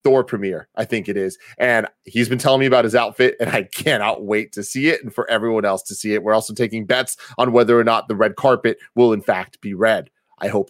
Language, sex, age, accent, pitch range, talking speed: English, male, 30-49, American, 110-145 Hz, 260 wpm